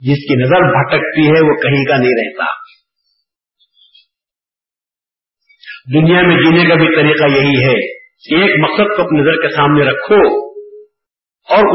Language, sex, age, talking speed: Urdu, male, 50-69, 135 wpm